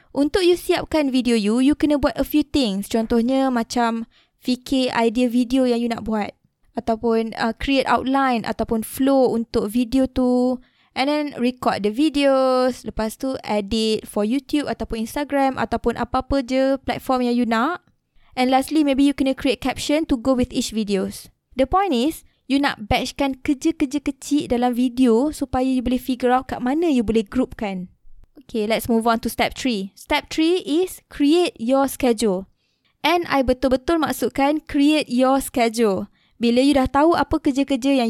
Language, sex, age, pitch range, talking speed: Malay, female, 20-39, 230-290 Hz, 170 wpm